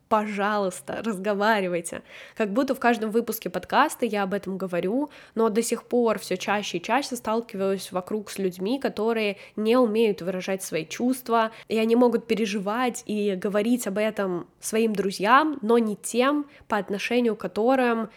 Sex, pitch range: female, 200-240 Hz